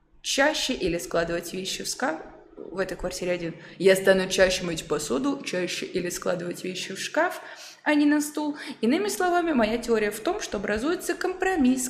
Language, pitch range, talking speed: Russian, 190-270 Hz, 170 wpm